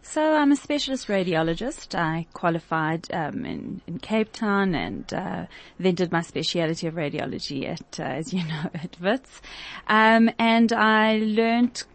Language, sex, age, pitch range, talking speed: English, female, 30-49, 170-210 Hz, 155 wpm